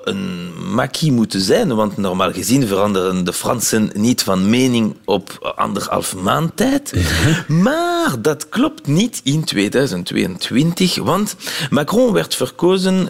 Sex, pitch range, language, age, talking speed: male, 110-170 Hz, Dutch, 40-59, 125 wpm